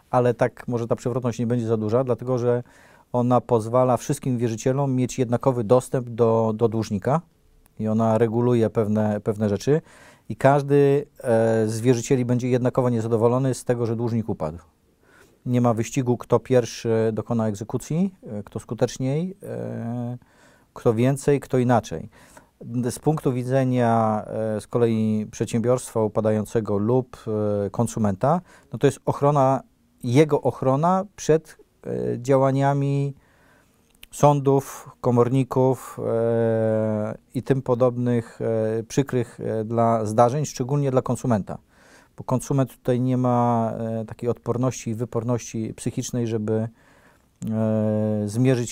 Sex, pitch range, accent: male, 115-130 Hz, native